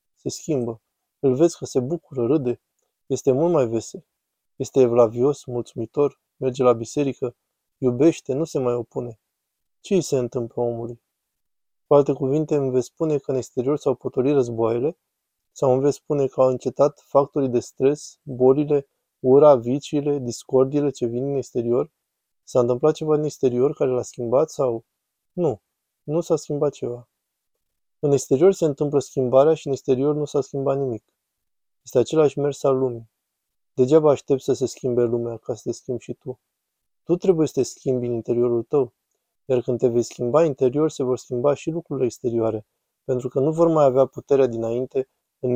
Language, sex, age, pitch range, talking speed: Romanian, male, 20-39, 120-145 Hz, 170 wpm